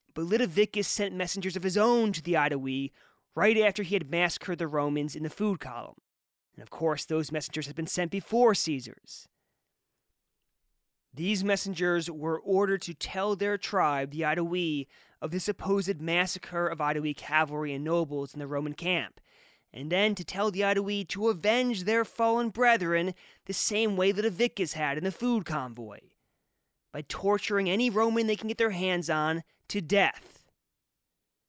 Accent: American